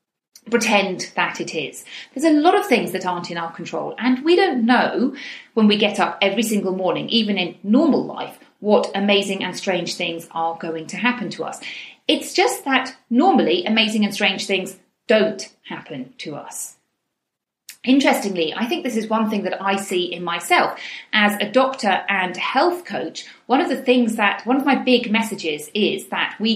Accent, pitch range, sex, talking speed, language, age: British, 185-250 Hz, female, 190 wpm, English, 40-59